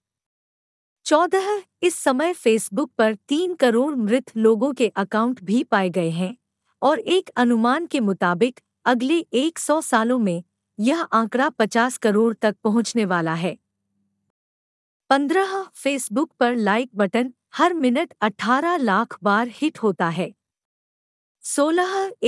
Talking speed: 125 wpm